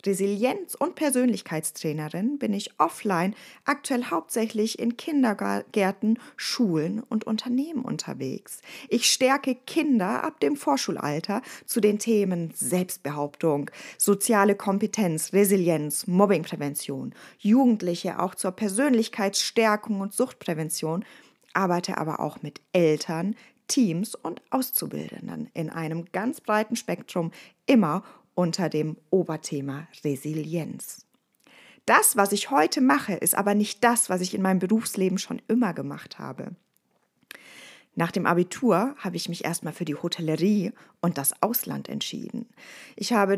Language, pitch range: German, 175-235 Hz